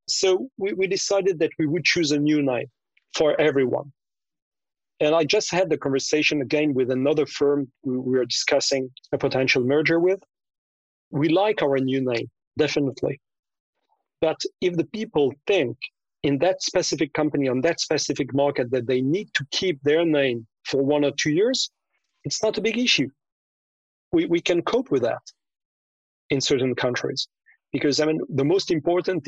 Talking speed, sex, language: 170 wpm, male, English